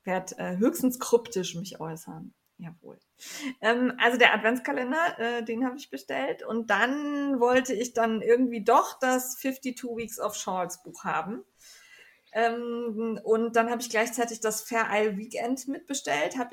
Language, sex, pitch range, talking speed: German, female, 210-240 Hz, 155 wpm